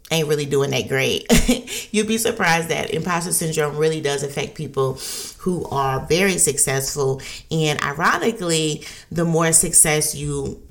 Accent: American